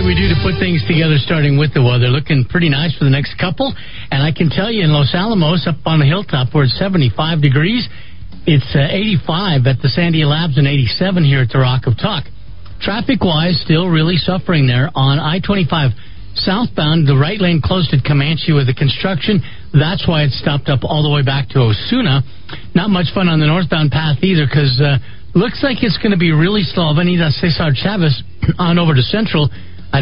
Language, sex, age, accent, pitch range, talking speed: English, male, 50-69, American, 135-180 Hz, 205 wpm